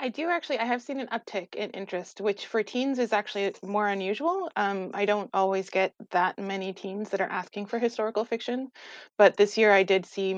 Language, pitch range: English, 180-210 Hz